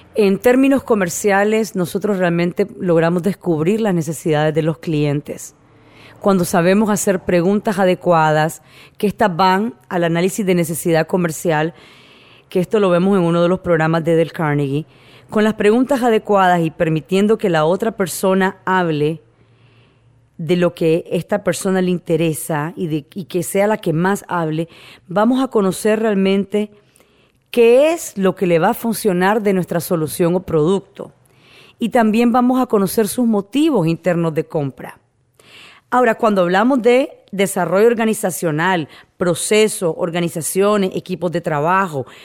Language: Spanish